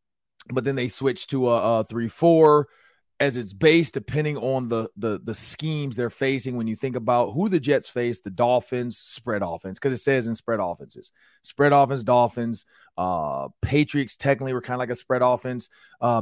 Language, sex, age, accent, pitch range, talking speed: English, male, 30-49, American, 115-145 Hz, 185 wpm